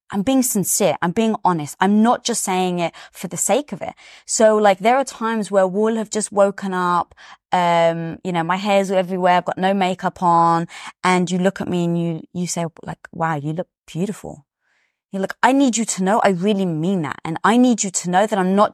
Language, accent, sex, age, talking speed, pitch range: English, British, female, 20-39, 230 wpm, 175-215 Hz